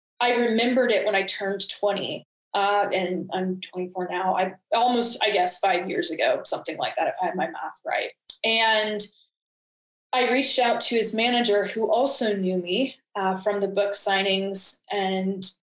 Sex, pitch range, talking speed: female, 190-210 Hz, 170 wpm